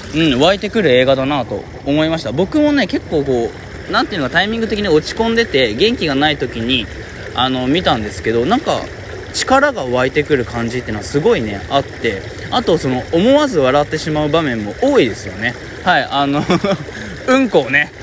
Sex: male